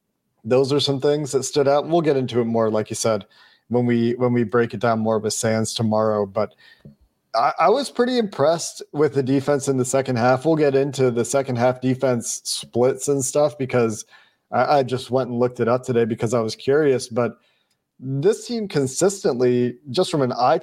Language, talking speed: English, 210 wpm